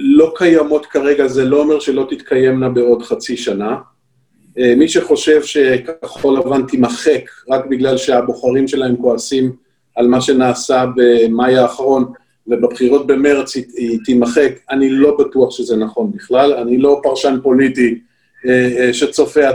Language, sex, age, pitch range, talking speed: Hebrew, male, 50-69, 125-160 Hz, 125 wpm